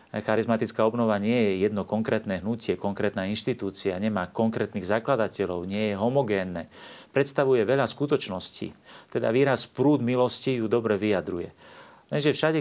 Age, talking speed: 40-59, 130 wpm